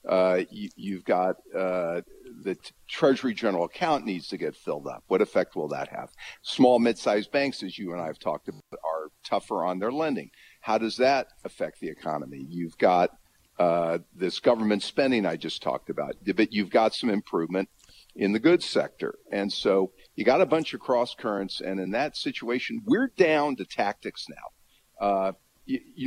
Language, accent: English, American